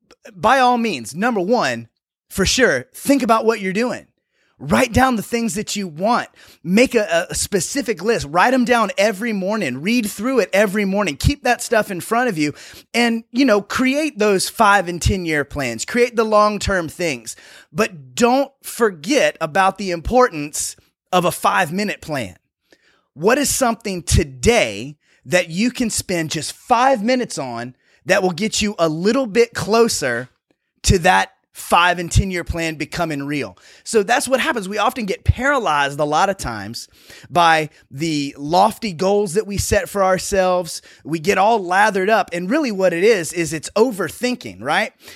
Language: English